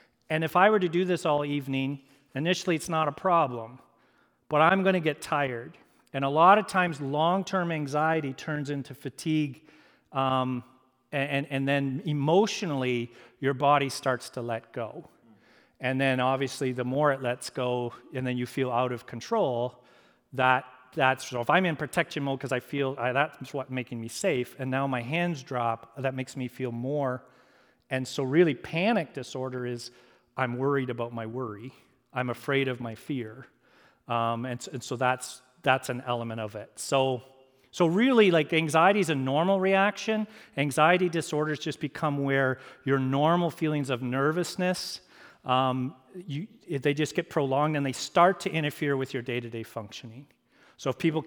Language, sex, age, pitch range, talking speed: English, male, 40-59, 125-155 Hz, 170 wpm